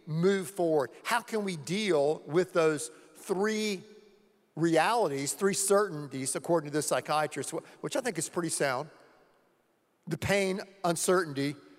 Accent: American